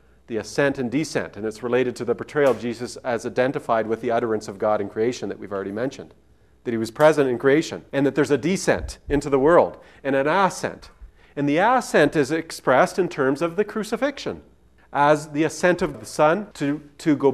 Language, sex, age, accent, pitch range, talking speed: English, male, 40-59, American, 115-155 Hz, 210 wpm